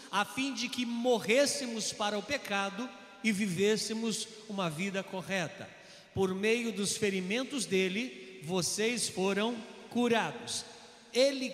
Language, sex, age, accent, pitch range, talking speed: Portuguese, male, 50-69, Brazilian, 215-270 Hz, 115 wpm